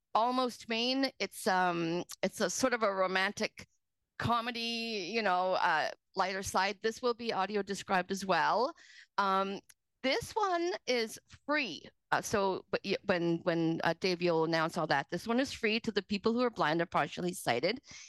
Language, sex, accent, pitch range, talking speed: English, female, American, 180-240 Hz, 175 wpm